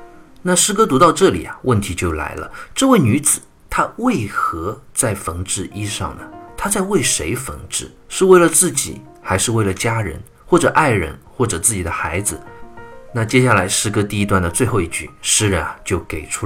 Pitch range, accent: 95-150 Hz, native